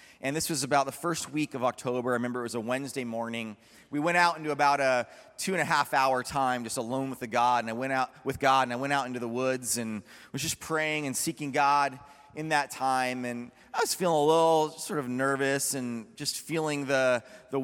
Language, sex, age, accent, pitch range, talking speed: English, male, 30-49, American, 125-165 Hz, 225 wpm